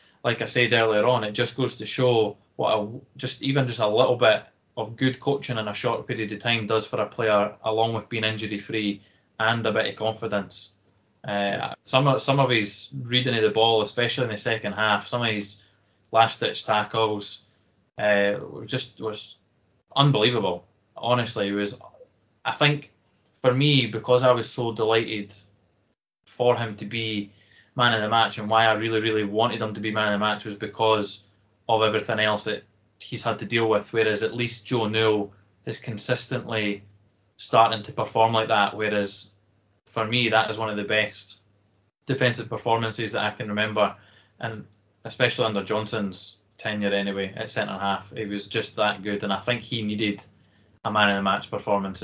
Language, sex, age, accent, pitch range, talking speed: English, male, 20-39, British, 105-115 Hz, 185 wpm